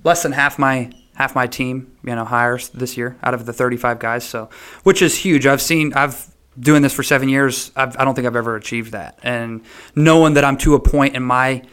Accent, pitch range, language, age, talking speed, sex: American, 120-135 Hz, English, 30-49, 235 wpm, male